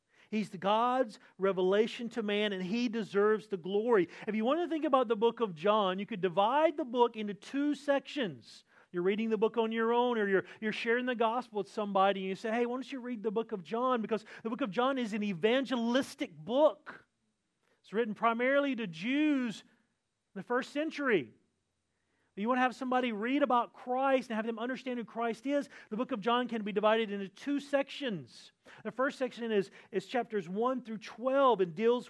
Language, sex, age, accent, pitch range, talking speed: English, male, 40-59, American, 205-250 Hz, 205 wpm